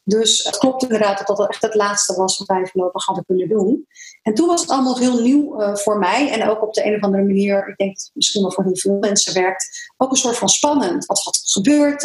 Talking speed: 255 wpm